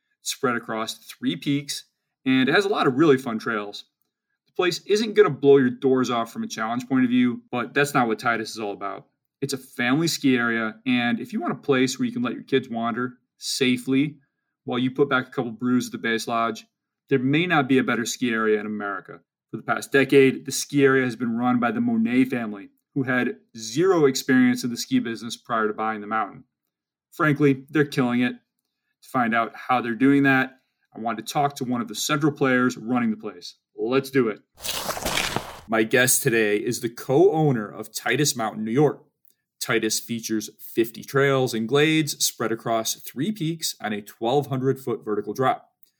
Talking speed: 205 wpm